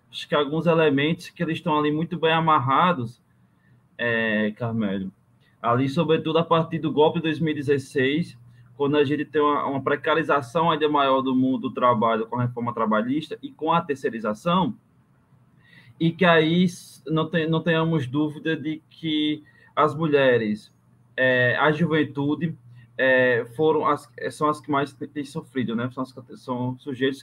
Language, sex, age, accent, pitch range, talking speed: Portuguese, male, 20-39, Brazilian, 130-160 Hz, 145 wpm